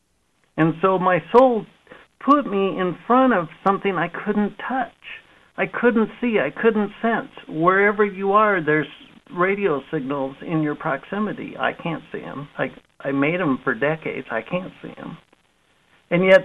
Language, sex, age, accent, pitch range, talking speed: English, male, 60-79, American, 160-210 Hz, 160 wpm